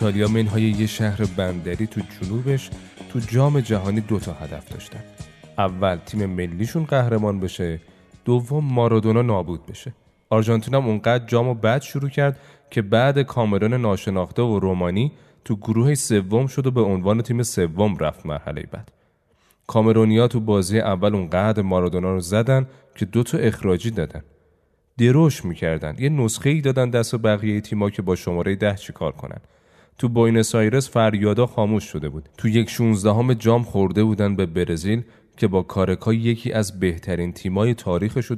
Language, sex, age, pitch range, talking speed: Persian, male, 30-49, 90-115 Hz, 150 wpm